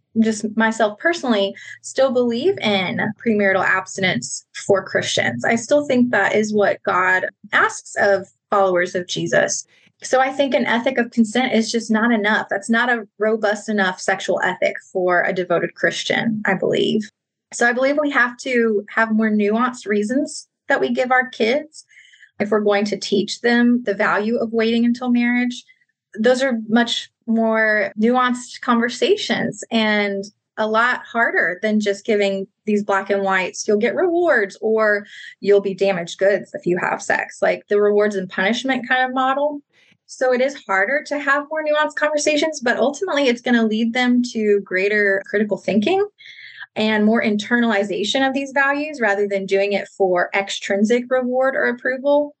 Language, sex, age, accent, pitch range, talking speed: English, female, 20-39, American, 200-255 Hz, 165 wpm